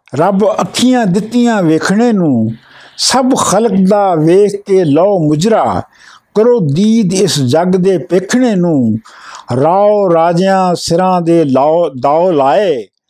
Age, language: 60-79, Punjabi